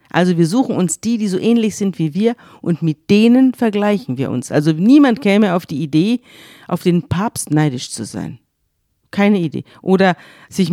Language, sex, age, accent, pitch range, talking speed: German, female, 50-69, German, 155-215 Hz, 185 wpm